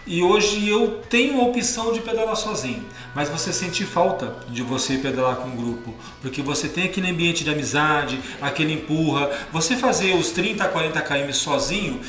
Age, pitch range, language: 40-59, 145-215 Hz, Portuguese